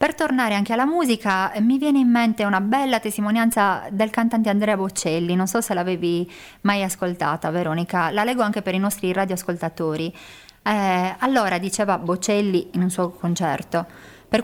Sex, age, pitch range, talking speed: female, 30-49, 175-225 Hz, 160 wpm